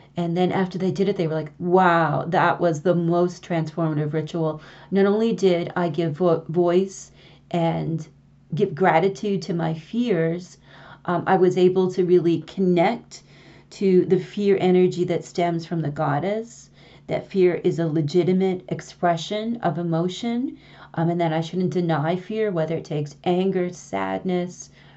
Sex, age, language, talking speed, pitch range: female, 40-59, English, 155 wpm, 160-185 Hz